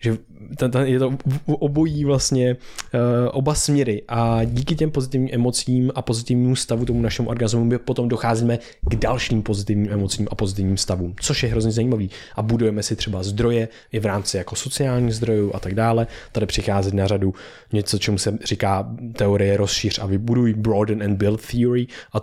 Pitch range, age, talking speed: 105-125 Hz, 20-39, 170 wpm